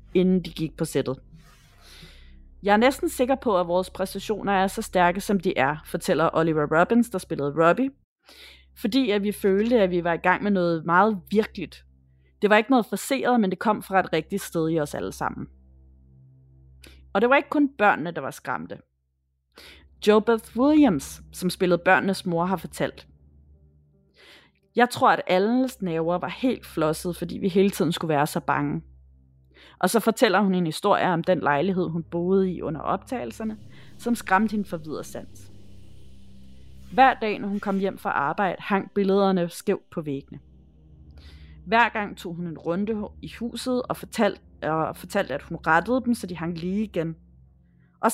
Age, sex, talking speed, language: 30-49, female, 175 wpm, Danish